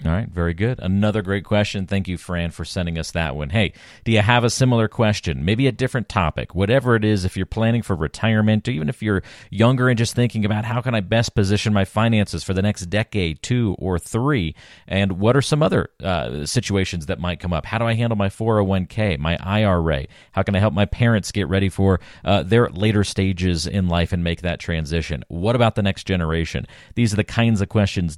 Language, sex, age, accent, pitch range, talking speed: English, male, 40-59, American, 85-115 Hz, 225 wpm